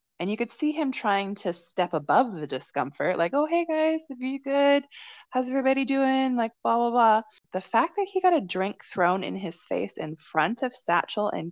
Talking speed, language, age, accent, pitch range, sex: 215 wpm, English, 20-39, American, 170-260 Hz, female